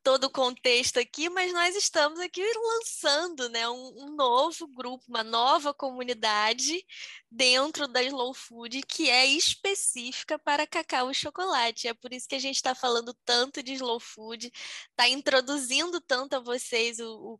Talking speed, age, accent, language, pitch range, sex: 160 wpm, 10-29, Brazilian, Portuguese, 235-285 Hz, female